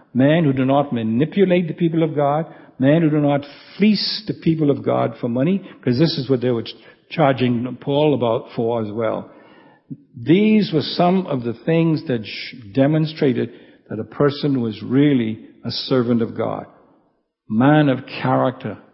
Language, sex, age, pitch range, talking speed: English, male, 60-79, 120-160 Hz, 165 wpm